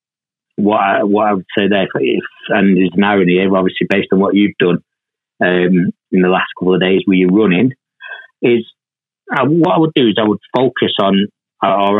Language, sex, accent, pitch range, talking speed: English, male, British, 90-105 Hz, 205 wpm